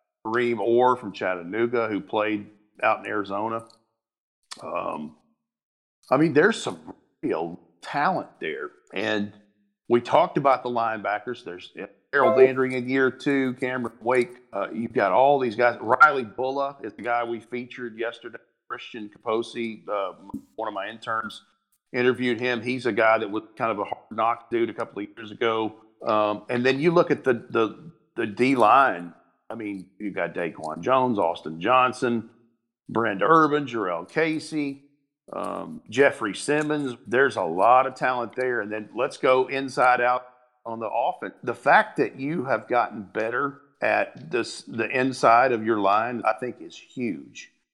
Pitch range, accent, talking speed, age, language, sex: 110-135 Hz, American, 160 wpm, 40-59, English, male